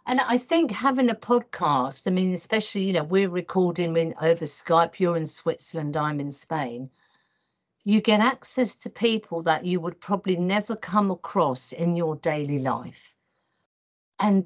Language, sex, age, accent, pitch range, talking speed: English, female, 50-69, British, 160-205 Hz, 160 wpm